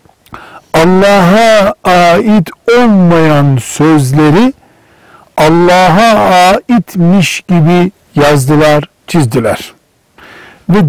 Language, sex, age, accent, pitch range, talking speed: Turkish, male, 60-79, native, 155-205 Hz, 55 wpm